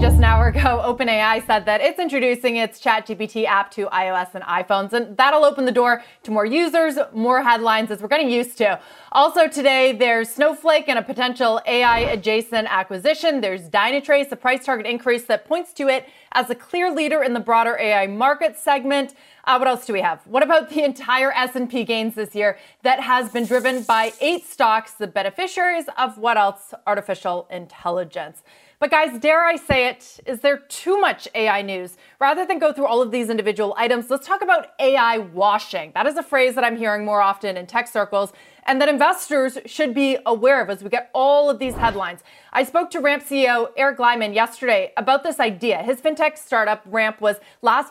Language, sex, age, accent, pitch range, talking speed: English, female, 30-49, American, 215-275 Hz, 195 wpm